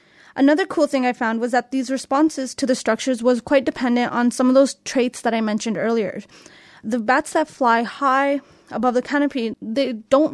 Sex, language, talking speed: female, English, 195 wpm